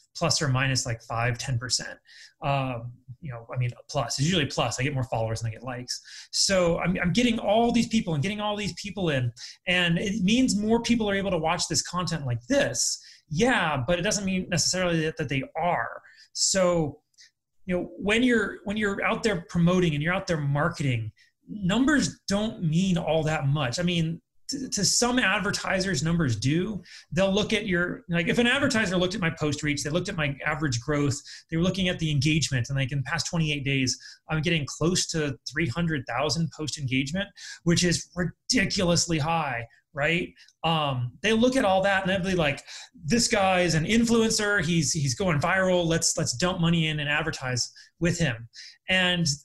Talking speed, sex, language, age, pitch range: 190 wpm, male, English, 30-49, 145-190 Hz